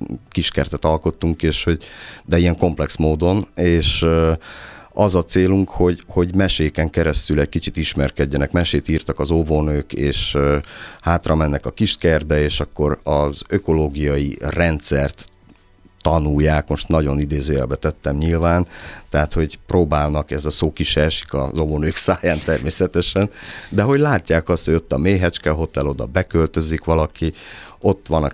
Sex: male